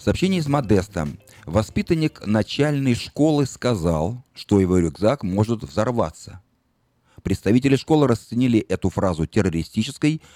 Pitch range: 95-135 Hz